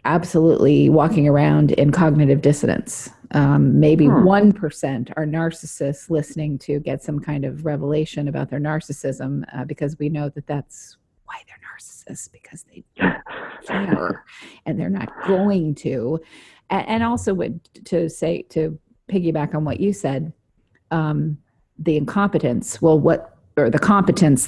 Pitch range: 145-170 Hz